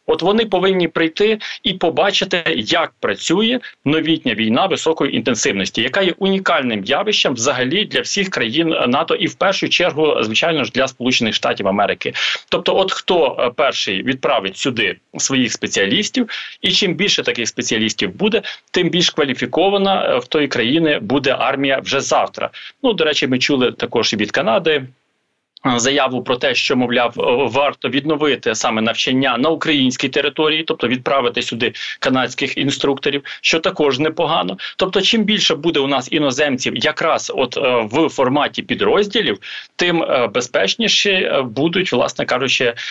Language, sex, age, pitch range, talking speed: Ukrainian, male, 40-59, 140-200 Hz, 140 wpm